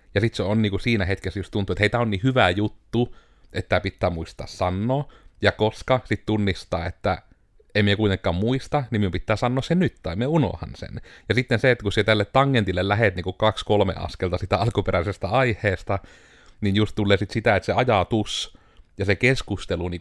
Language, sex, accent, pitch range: Finnish, male, native, 90-110 Hz